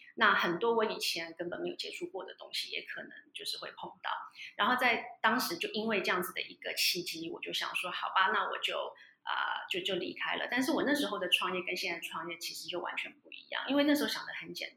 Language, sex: Chinese, female